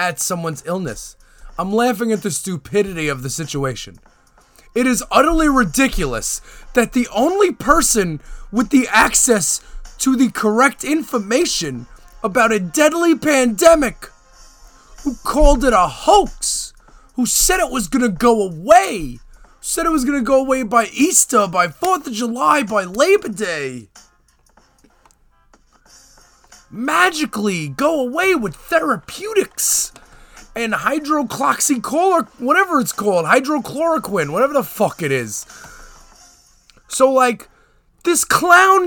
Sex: male